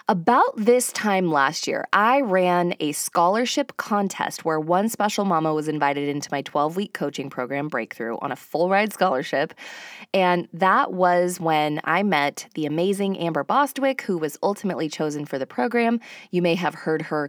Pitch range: 150-190 Hz